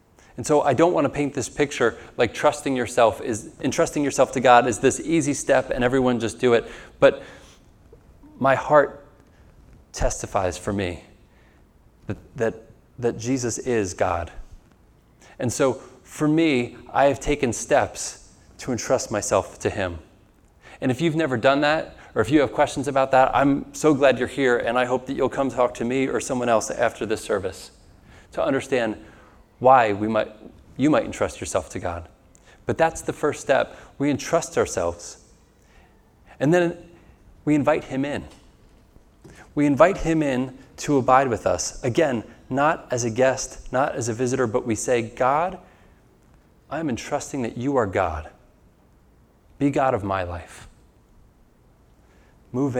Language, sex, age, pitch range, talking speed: English, male, 30-49, 110-140 Hz, 160 wpm